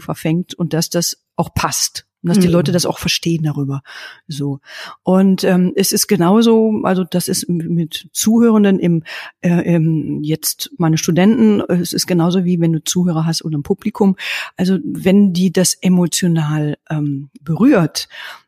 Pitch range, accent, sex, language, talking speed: 170-215 Hz, German, female, German, 160 wpm